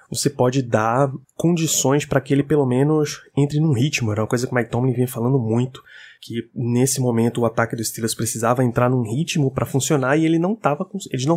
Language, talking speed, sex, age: Portuguese, 200 wpm, male, 20-39